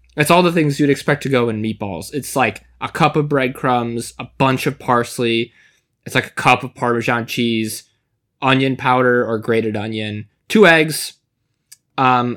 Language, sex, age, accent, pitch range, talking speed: English, male, 20-39, American, 115-145 Hz, 170 wpm